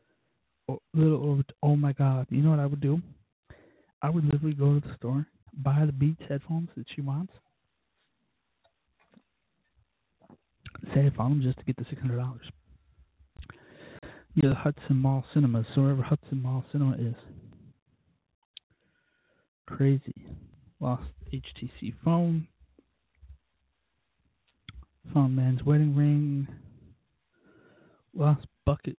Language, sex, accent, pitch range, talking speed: English, male, American, 125-150 Hz, 115 wpm